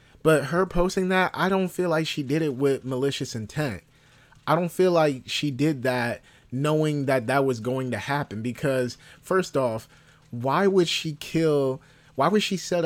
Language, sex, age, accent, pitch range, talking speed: English, male, 30-49, American, 125-155 Hz, 180 wpm